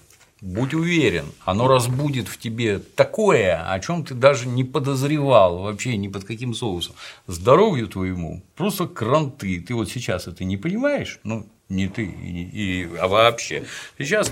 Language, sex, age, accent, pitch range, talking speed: Russian, male, 50-69, native, 100-150 Hz, 150 wpm